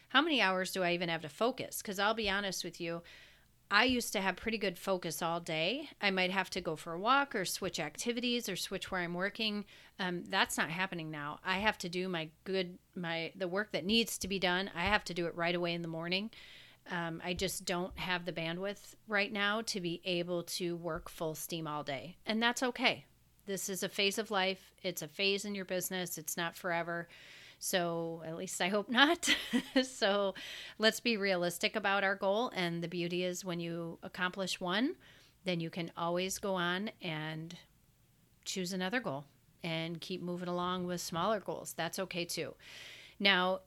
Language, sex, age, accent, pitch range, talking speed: English, female, 30-49, American, 170-200 Hz, 200 wpm